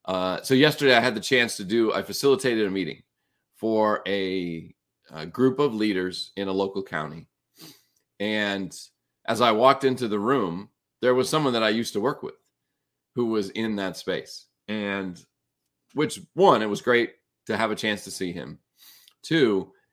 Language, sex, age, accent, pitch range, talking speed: English, male, 40-59, American, 85-110 Hz, 175 wpm